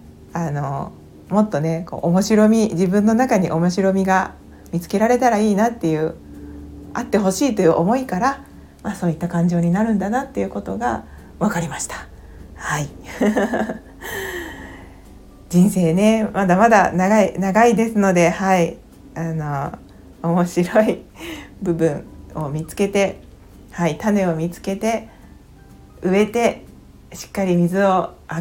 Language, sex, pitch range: Japanese, female, 170-215 Hz